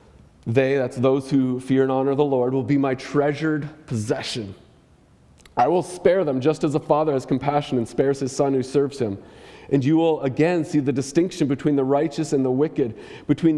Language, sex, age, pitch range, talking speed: English, male, 30-49, 110-145 Hz, 200 wpm